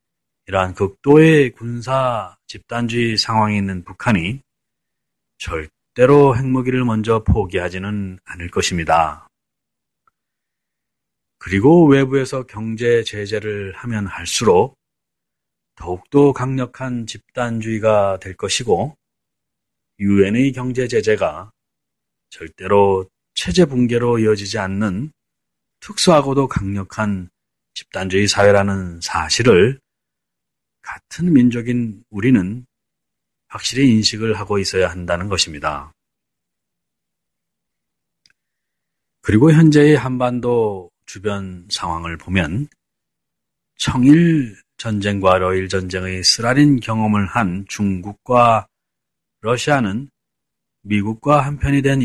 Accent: native